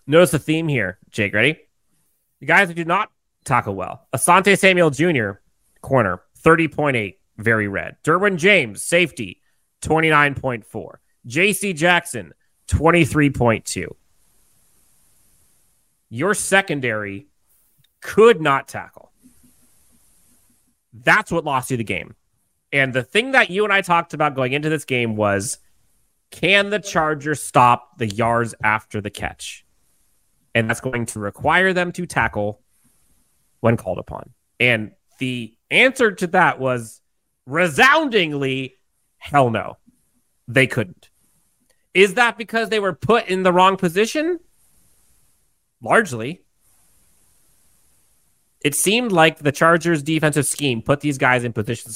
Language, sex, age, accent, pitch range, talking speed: English, male, 30-49, American, 115-175 Hz, 120 wpm